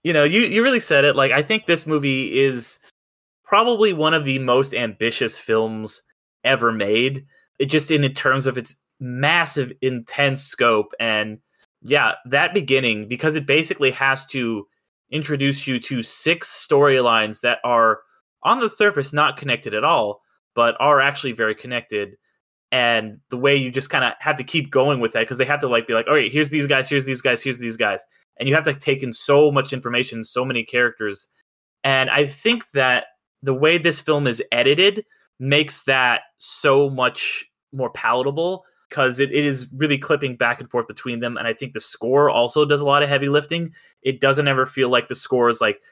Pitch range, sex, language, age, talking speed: 120-150 Hz, male, English, 20-39, 195 wpm